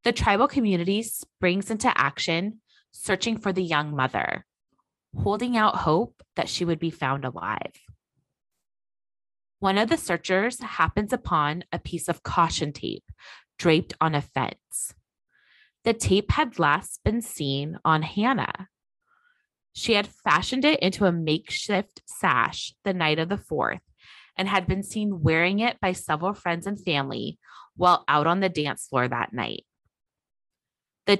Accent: American